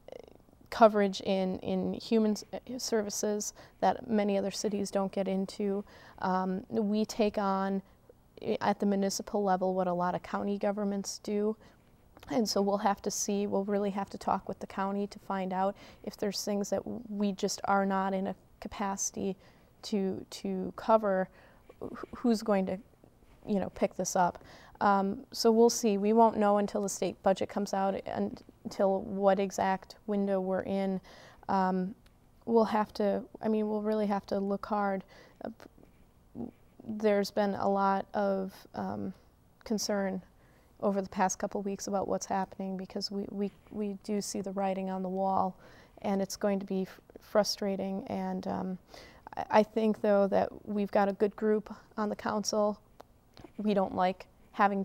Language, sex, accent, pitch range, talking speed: English, female, American, 195-210 Hz, 165 wpm